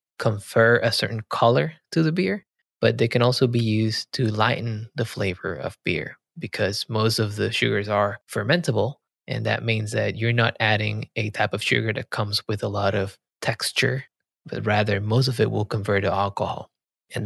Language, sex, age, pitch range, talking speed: English, male, 20-39, 110-125 Hz, 190 wpm